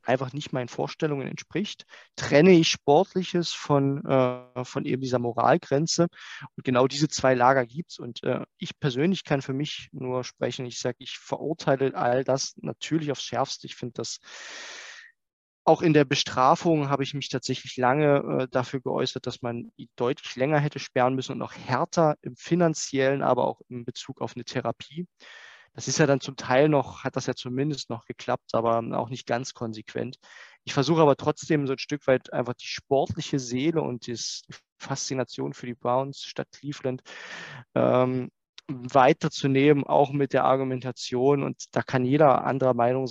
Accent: German